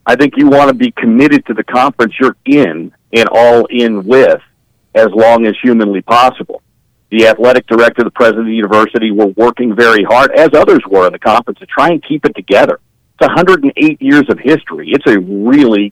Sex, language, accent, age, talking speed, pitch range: male, English, American, 50-69, 200 wpm, 110-130 Hz